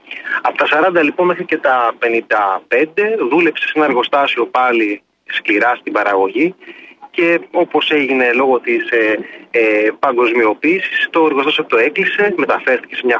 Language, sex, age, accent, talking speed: Greek, male, 30-49, native, 140 wpm